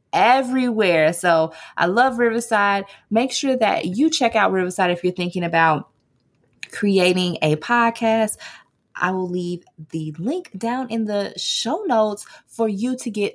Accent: American